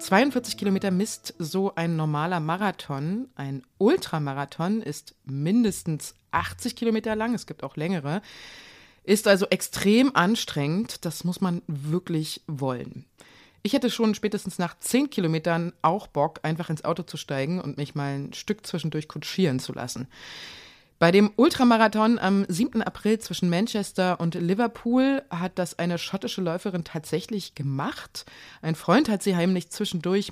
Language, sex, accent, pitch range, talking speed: German, female, German, 160-210 Hz, 145 wpm